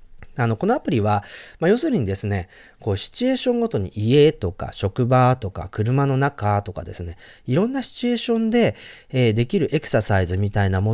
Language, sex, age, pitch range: Japanese, male, 30-49, 95-135 Hz